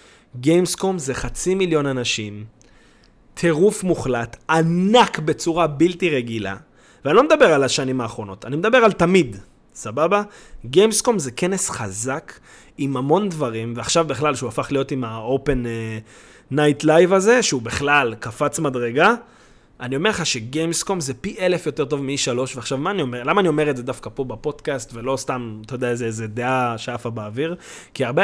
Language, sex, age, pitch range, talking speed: Hebrew, male, 20-39, 120-170 Hz, 140 wpm